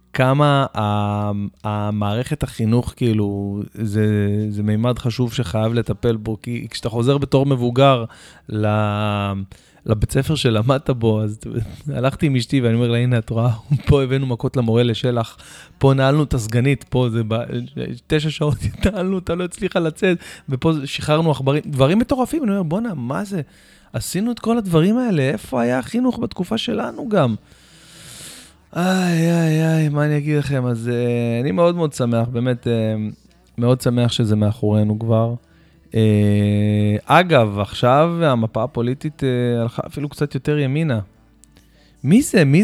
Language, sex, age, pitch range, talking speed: Hebrew, male, 20-39, 110-155 Hz, 145 wpm